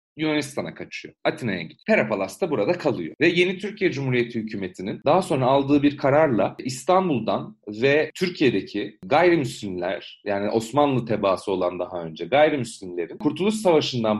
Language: Turkish